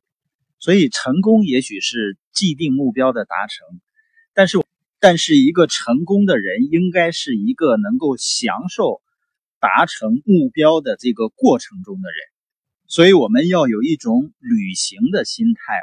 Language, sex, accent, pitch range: Chinese, male, native, 155-225 Hz